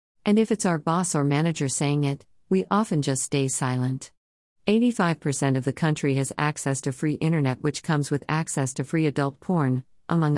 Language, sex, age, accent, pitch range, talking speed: English, female, 50-69, American, 130-165 Hz, 185 wpm